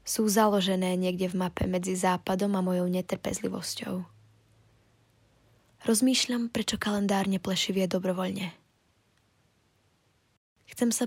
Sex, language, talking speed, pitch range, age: female, Slovak, 90 wpm, 180-205 Hz, 20-39